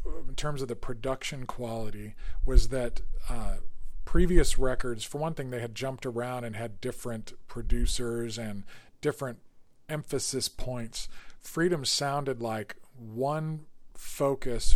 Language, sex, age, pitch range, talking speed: English, male, 40-59, 110-135 Hz, 125 wpm